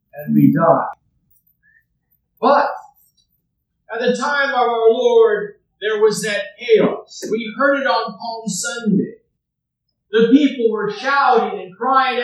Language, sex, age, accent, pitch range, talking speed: English, male, 50-69, American, 225-275 Hz, 125 wpm